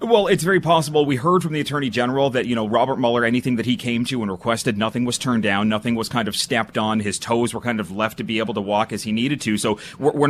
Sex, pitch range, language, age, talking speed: male, 110-145 Hz, English, 30-49, 285 wpm